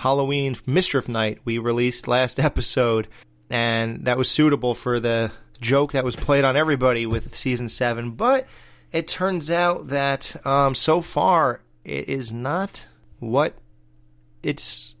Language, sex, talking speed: English, male, 140 wpm